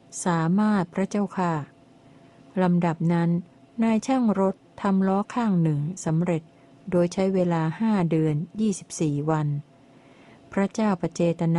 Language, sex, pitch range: Thai, female, 155-190 Hz